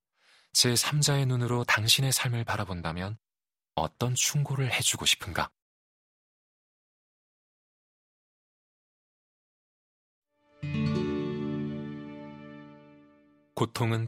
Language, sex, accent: Korean, male, native